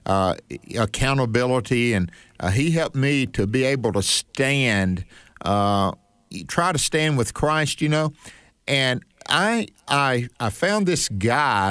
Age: 50-69